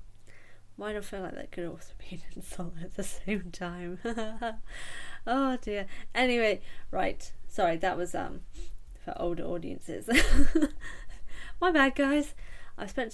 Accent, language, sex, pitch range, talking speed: British, English, female, 180-235 Hz, 135 wpm